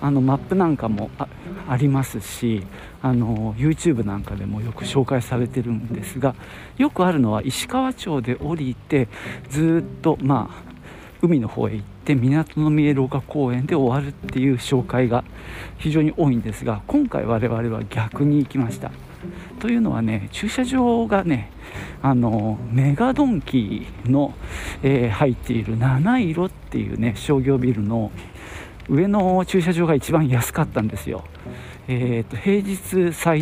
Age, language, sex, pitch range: 50-69, Japanese, male, 110-155 Hz